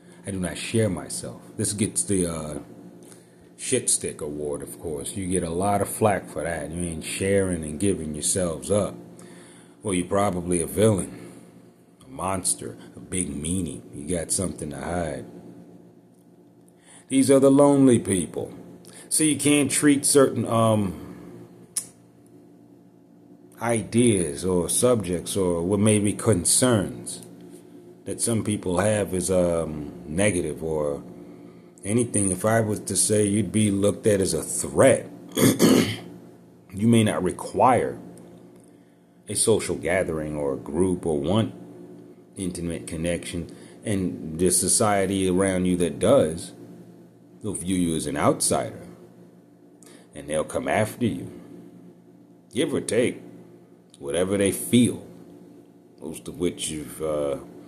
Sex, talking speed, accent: male, 135 wpm, American